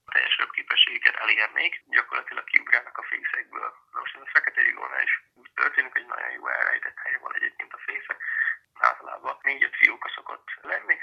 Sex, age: male, 30-49